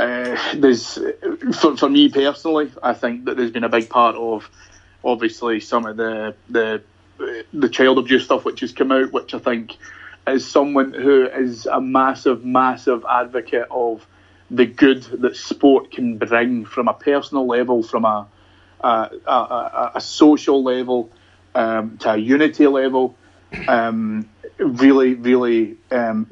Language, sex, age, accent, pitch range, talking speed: English, male, 30-49, British, 110-130 Hz, 150 wpm